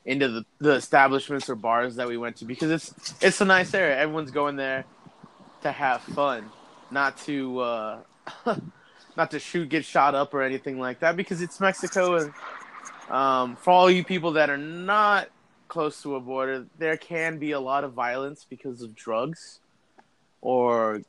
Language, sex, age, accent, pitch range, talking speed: English, male, 20-39, American, 135-165 Hz, 175 wpm